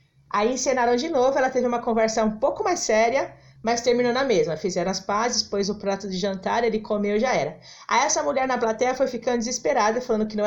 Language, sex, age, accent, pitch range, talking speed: Portuguese, female, 30-49, Brazilian, 195-250 Hz, 230 wpm